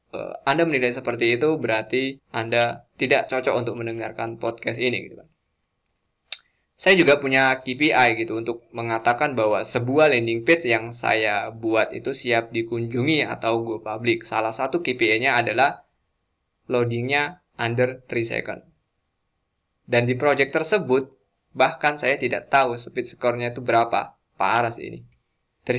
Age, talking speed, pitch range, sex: 20-39, 130 wpm, 115-135 Hz, male